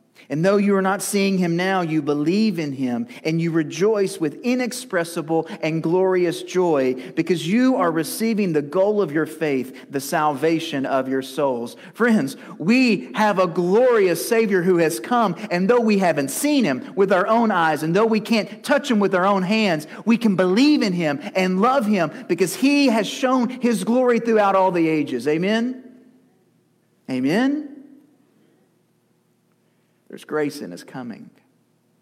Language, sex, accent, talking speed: English, male, American, 165 wpm